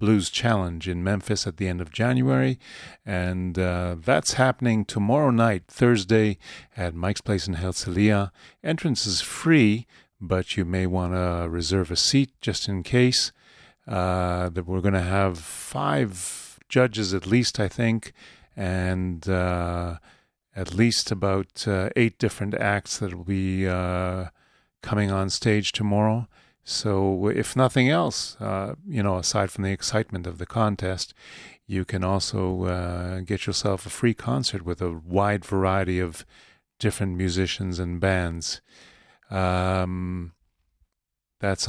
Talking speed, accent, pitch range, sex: 140 wpm, American, 90-105 Hz, male